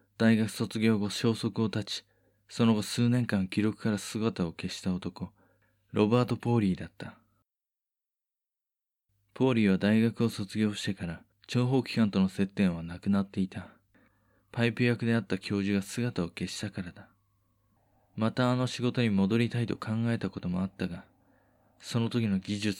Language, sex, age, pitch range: Japanese, male, 20-39, 95-115 Hz